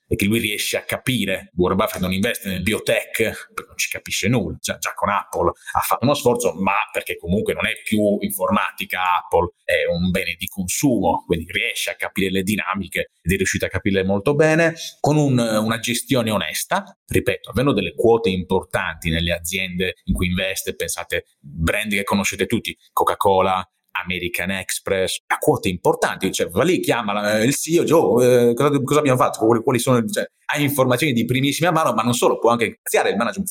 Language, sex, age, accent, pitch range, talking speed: Italian, male, 30-49, native, 95-145 Hz, 190 wpm